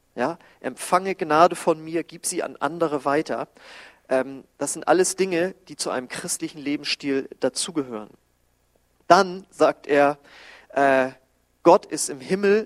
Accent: German